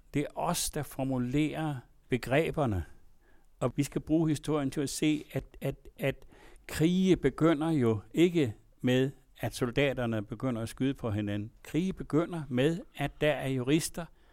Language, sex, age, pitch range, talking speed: Danish, male, 60-79, 120-150 Hz, 150 wpm